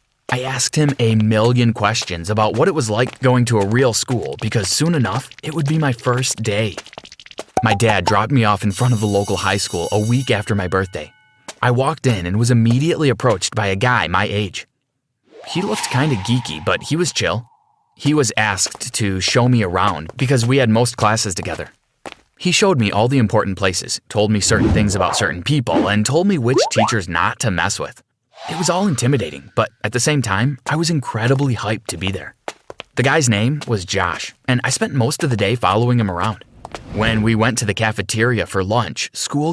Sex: male